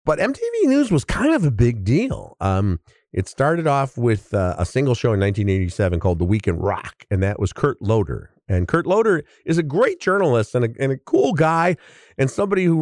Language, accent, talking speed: English, American, 215 wpm